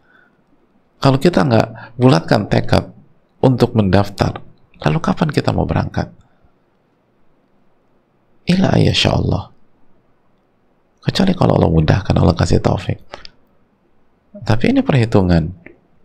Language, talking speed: Indonesian, 95 wpm